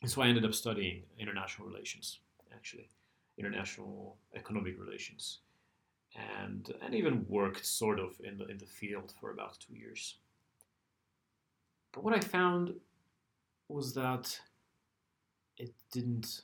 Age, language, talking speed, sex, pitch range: 40-59, English, 125 wpm, male, 100-125 Hz